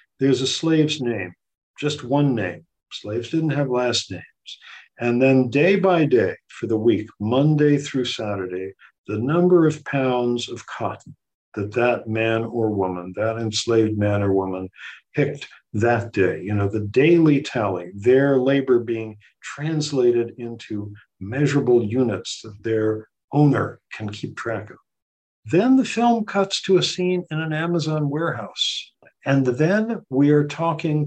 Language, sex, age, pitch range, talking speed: English, male, 50-69, 115-165 Hz, 150 wpm